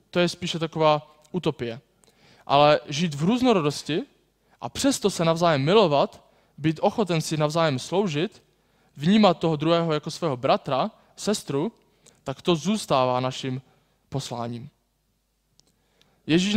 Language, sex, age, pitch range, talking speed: Czech, male, 20-39, 140-180 Hz, 115 wpm